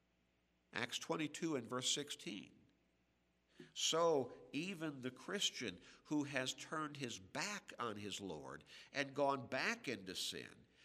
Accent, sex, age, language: American, male, 60-79, English